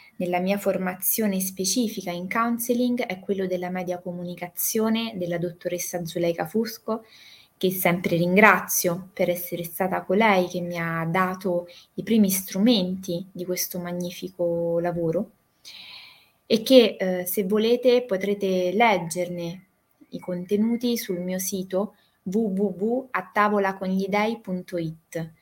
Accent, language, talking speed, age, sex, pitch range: native, Italian, 110 wpm, 20-39, female, 175-210 Hz